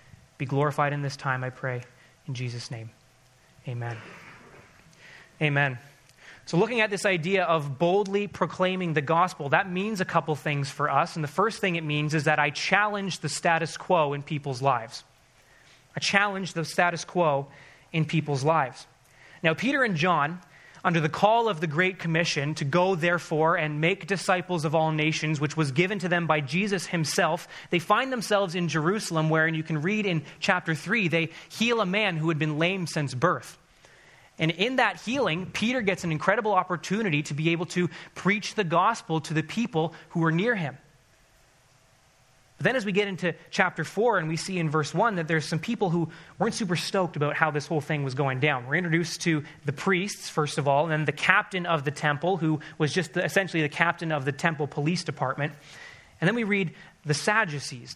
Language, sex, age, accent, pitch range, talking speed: English, male, 30-49, American, 150-185 Hz, 195 wpm